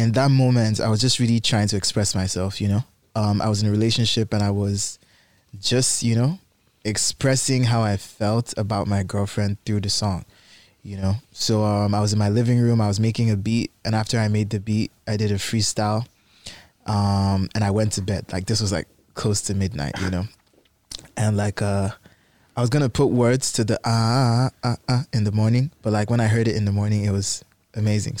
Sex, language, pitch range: male, English, 100-120 Hz